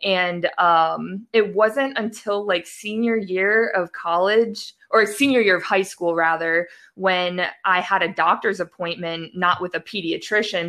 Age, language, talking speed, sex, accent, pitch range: 20-39, English, 150 wpm, female, American, 175-215 Hz